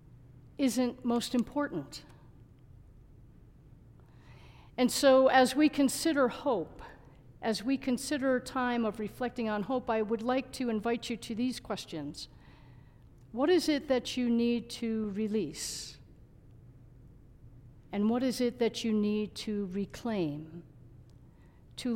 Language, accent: English, American